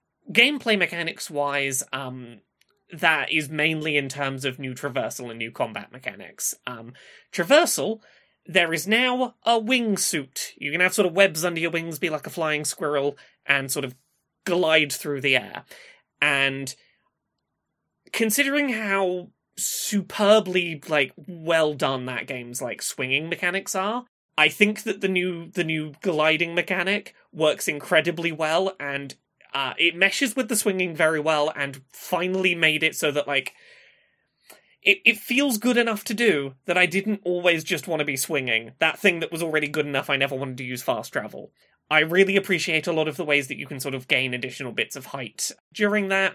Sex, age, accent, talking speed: male, 20-39, British, 175 wpm